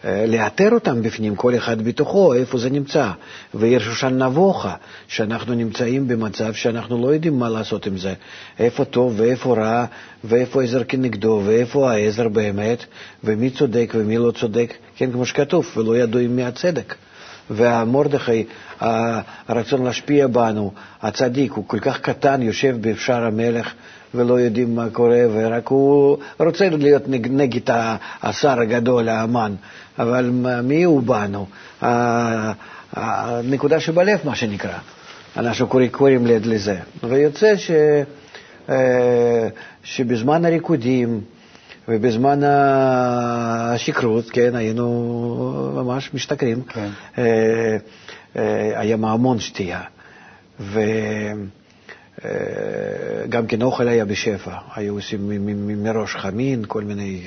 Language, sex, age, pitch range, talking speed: Hebrew, male, 50-69, 110-130 Hz, 105 wpm